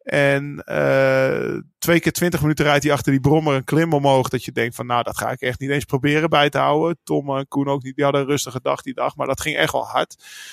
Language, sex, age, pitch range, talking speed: Dutch, male, 20-39, 140-155 Hz, 270 wpm